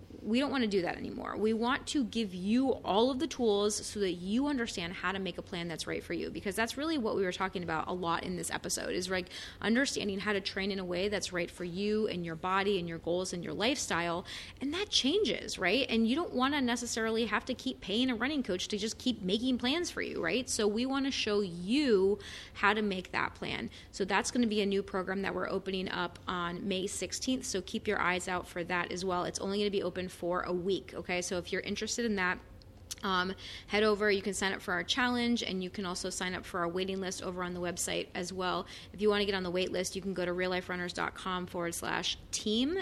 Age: 20-39